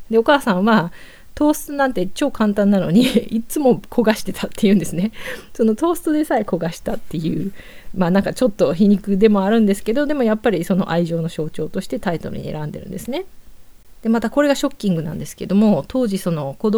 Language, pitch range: Japanese, 170-225 Hz